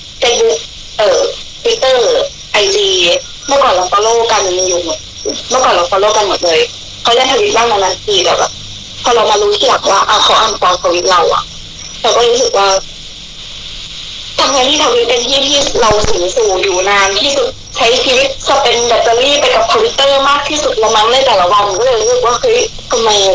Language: Thai